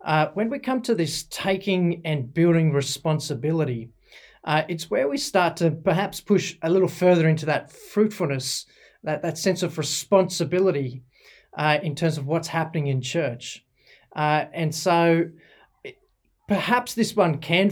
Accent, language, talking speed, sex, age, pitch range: Australian, English, 150 wpm, male, 30-49, 150-190 Hz